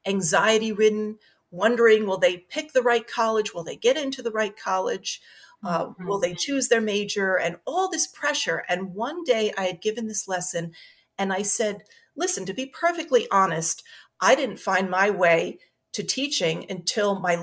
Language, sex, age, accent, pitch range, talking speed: English, female, 40-59, American, 185-235 Hz, 170 wpm